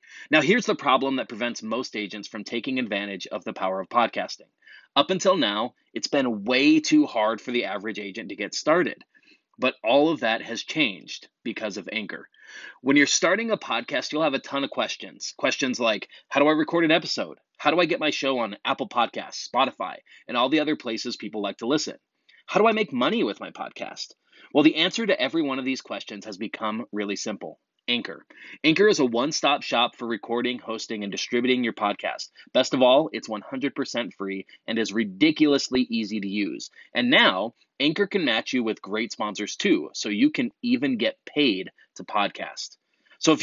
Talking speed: 200 wpm